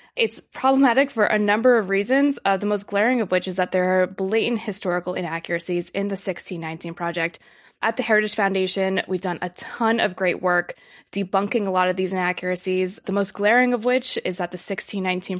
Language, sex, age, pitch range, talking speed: English, female, 20-39, 185-210 Hz, 195 wpm